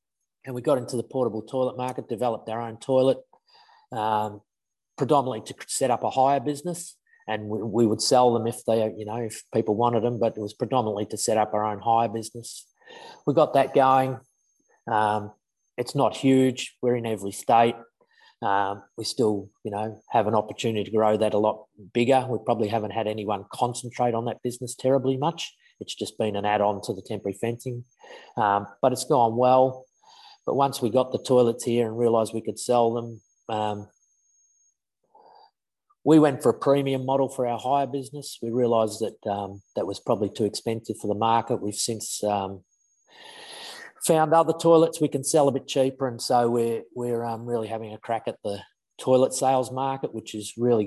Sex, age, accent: male, 30-49, Australian